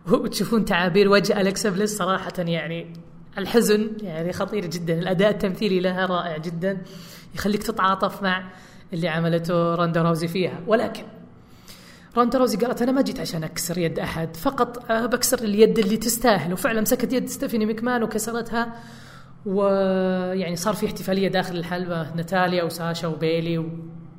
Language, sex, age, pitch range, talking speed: Arabic, female, 20-39, 170-220 Hz, 135 wpm